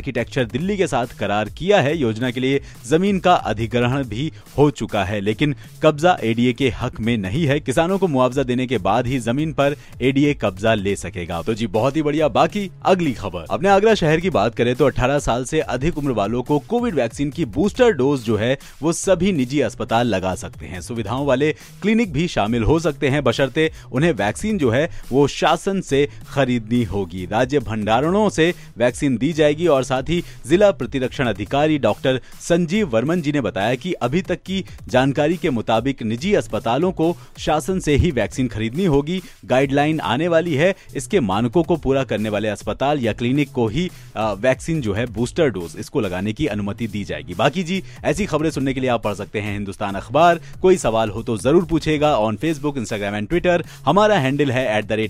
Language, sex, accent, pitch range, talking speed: Hindi, male, native, 115-160 Hz, 190 wpm